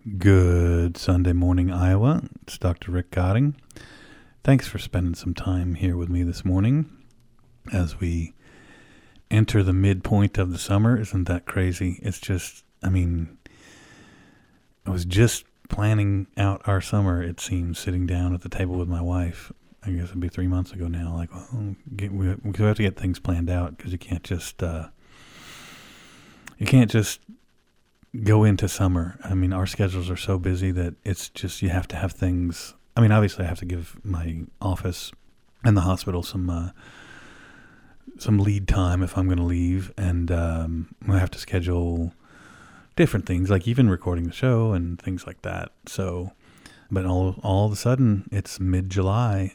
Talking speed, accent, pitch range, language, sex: 165 wpm, American, 90-105 Hz, English, male